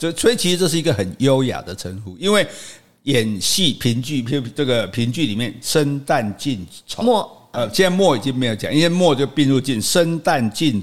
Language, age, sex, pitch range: Chinese, 50-69, male, 120-185 Hz